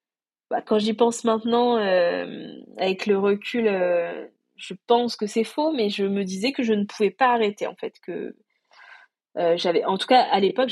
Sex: female